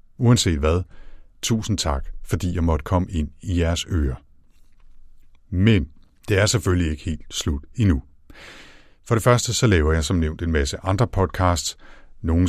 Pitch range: 75-105 Hz